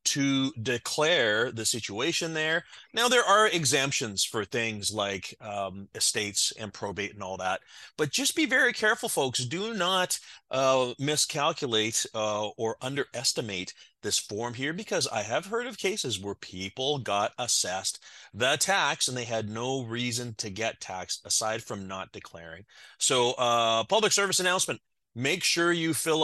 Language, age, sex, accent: English, 30-49, male, American